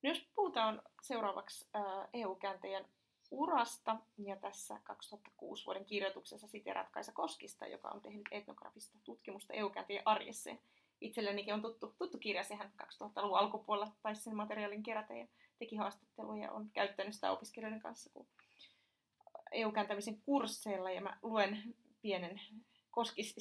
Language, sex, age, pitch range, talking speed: Finnish, female, 30-49, 190-225 Hz, 125 wpm